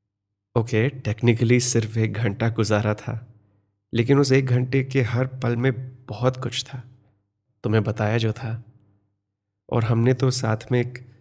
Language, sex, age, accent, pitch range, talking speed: Hindi, male, 30-49, native, 100-120 Hz, 160 wpm